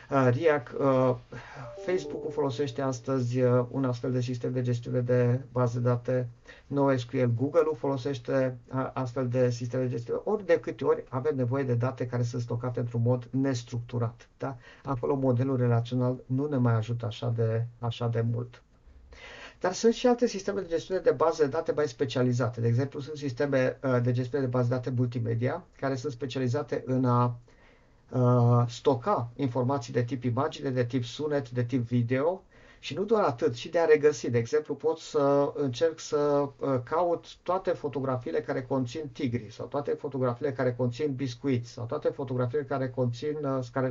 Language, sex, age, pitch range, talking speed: Romanian, male, 50-69, 125-145 Hz, 165 wpm